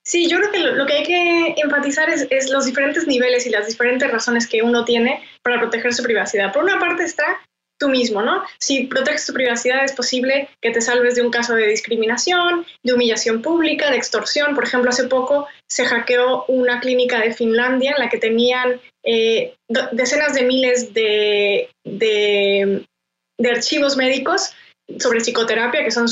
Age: 20-39